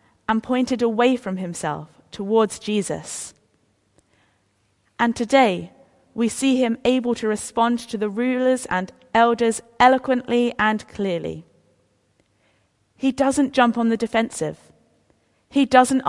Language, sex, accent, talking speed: English, female, British, 115 wpm